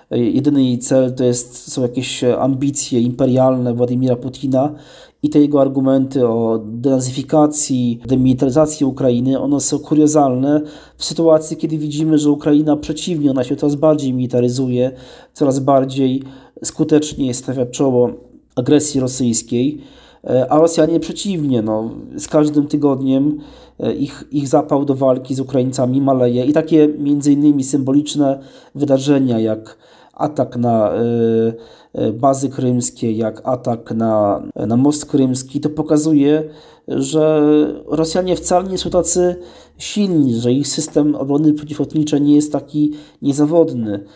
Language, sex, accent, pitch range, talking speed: Polish, male, native, 125-150 Hz, 125 wpm